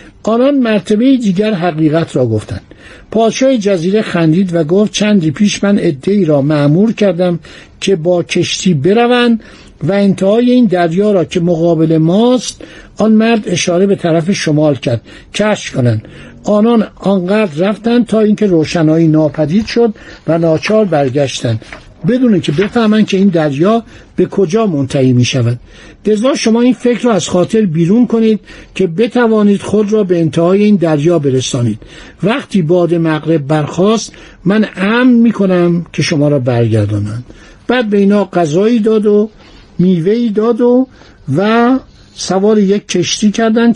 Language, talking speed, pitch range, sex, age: Persian, 140 wpm, 155-215 Hz, male, 60-79